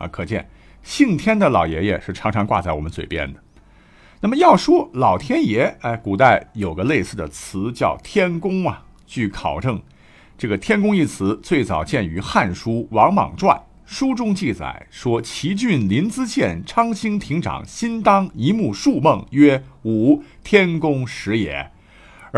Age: 50-69